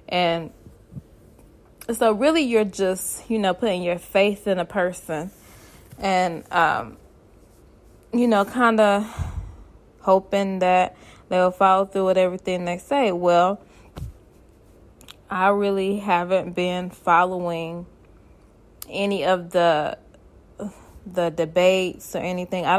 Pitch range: 175-205 Hz